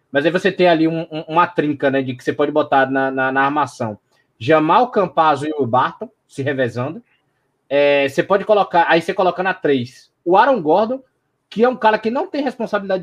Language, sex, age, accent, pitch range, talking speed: Portuguese, male, 20-39, Brazilian, 160-245 Hz, 210 wpm